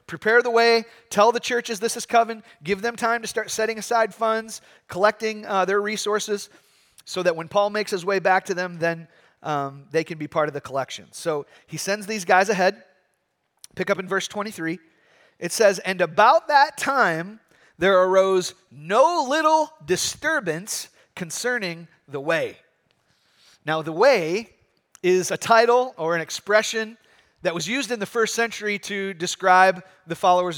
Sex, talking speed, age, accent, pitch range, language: male, 165 wpm, 30-49, American, 165-210 Hz, English